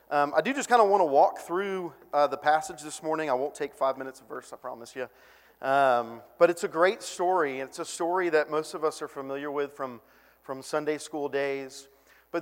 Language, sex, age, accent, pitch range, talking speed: English, male, 40-59, American, 135-170 Hz, 220 wpm